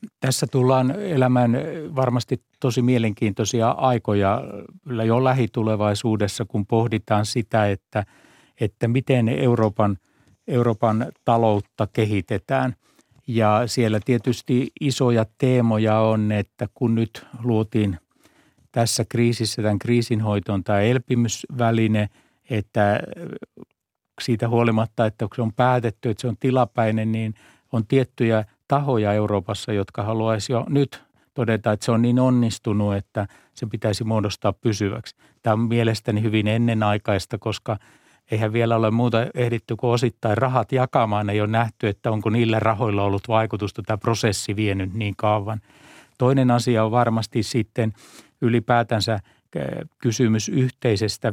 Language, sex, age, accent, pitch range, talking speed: Finnish, male, 60-79, native, 110-125 Hz, 125 wpm